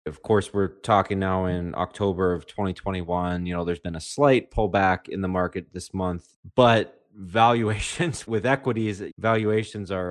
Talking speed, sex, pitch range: 170 wpm, male, 90-105 Hz